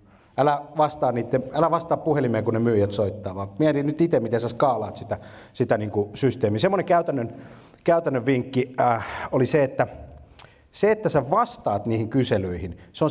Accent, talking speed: native, 175 wpm